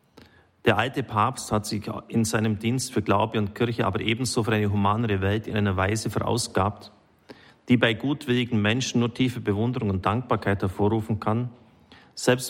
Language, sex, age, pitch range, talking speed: German, male, 40-59, 100-120 Hz, 165 wpm